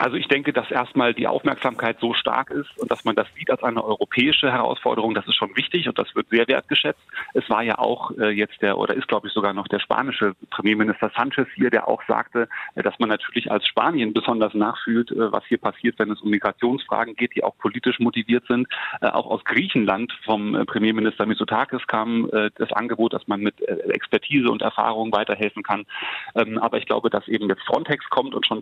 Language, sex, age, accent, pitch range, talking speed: German, male, 30-49, German, 105-120 Hz, 200 wpm